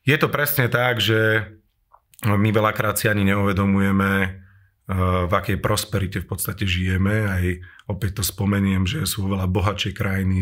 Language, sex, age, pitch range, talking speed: Slovak, male, 30-49, 100-110 Hz, 145 wpm